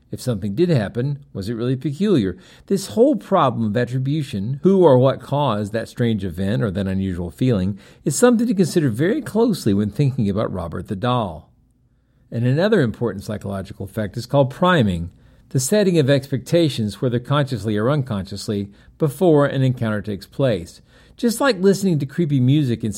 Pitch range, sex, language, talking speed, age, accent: 105-155 Hz, male, English, 165 wpm, 50-69, American